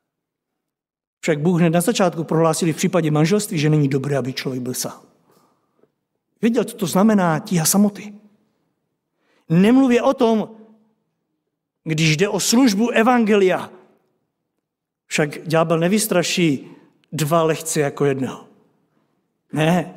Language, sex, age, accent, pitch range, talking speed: Czech, male, 50-69, native, 175-245 Hz, 115 wpm